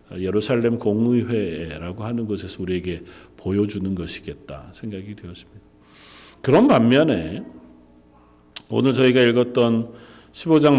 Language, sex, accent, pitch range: Korean, male, native, 100-135 Hz